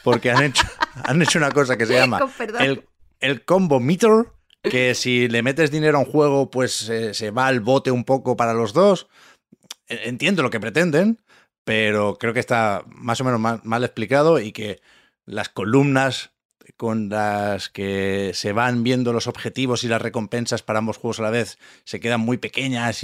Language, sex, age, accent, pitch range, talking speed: Spanish, male, 30-49, Spanish, 105-130 Hz, 185 wpm